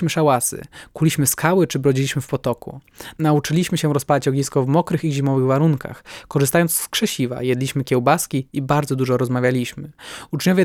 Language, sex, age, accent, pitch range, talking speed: Polish, male, 20-39, native, 135-160 Hz, 145 wpm